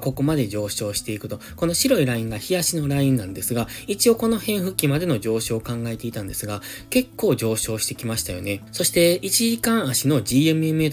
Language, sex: Japanese, male